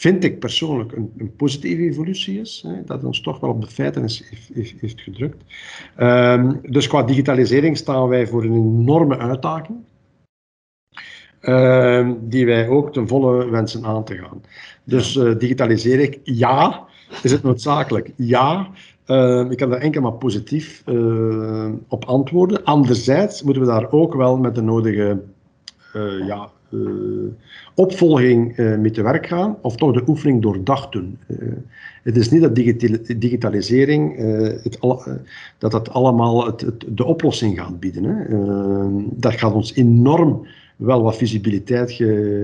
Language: Dutch